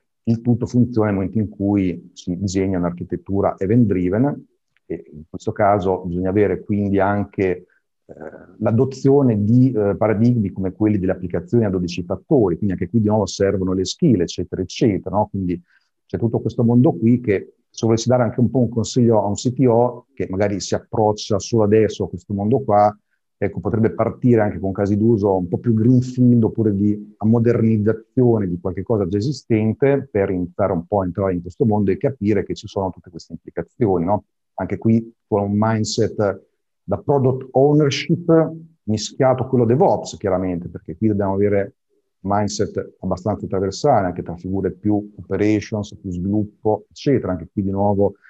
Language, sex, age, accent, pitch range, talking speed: Italian, male, 50-69, native, 95-115 Hz, 170 wpm